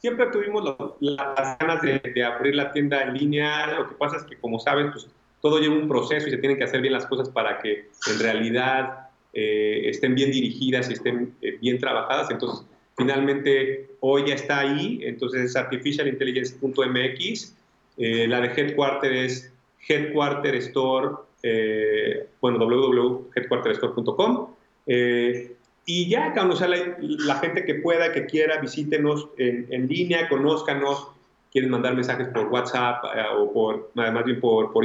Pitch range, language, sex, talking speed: 125-150 Hz, Spanish, male, 150 wpm